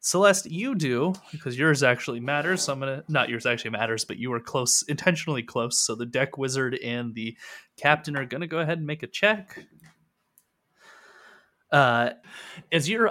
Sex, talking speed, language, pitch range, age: male, 185 wpm, English, 115-150 Hz, 20-39